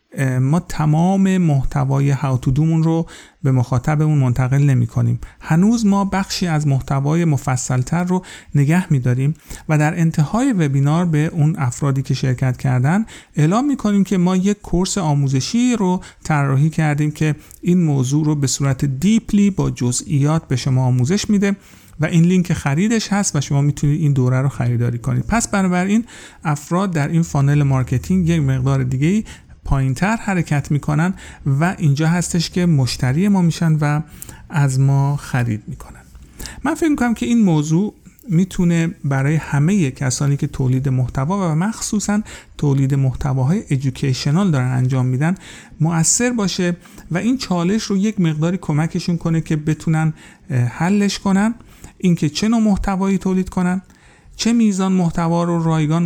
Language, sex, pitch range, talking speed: Persian, male, 140-190 Hz, 150 wpm